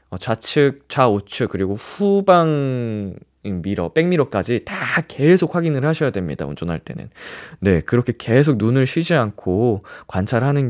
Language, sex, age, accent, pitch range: Korean, male, 20-39, native, 105-175 Hz